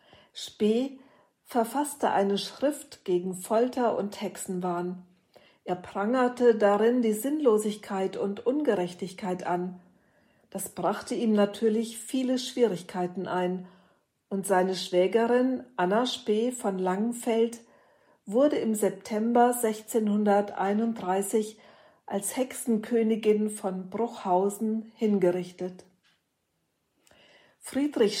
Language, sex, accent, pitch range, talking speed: German, female, German, 195-230 Hz, 85 wpm